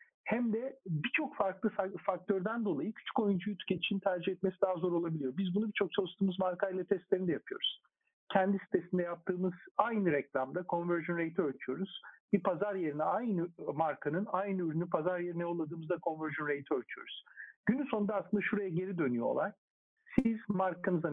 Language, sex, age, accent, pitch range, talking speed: Turkish, male, 50-69, native, 170-215 Hz, 150 wpm